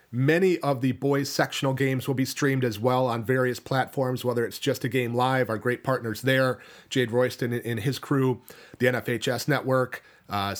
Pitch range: 115-140 Hz